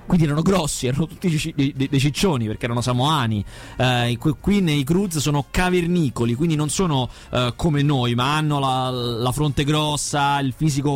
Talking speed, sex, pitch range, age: 185 wpm, male, 125-155 Hz, 30-49